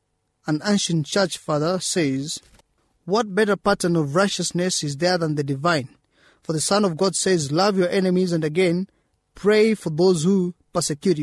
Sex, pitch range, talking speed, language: male, 160-195 Hz, 165 wpm, English